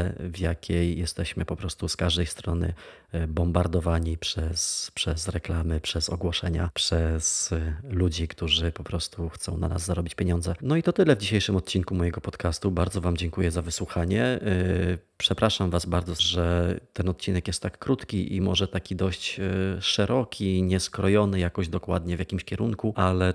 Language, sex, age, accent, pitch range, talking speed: Polish, male, 30-49, native, 85-95 Hz, 150 wpm